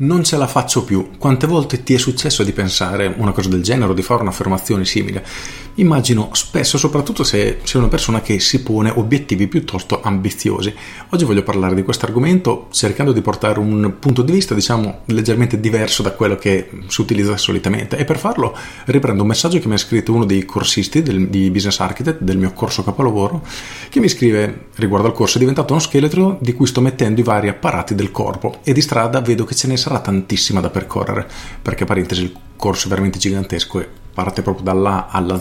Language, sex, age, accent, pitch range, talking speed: Italian, male, 40-59, native, 95-125 Hz, 205 wpm